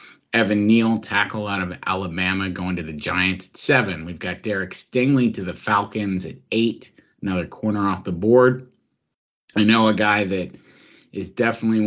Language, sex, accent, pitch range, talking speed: English, male, American, 100-135 Hz, 165 wpm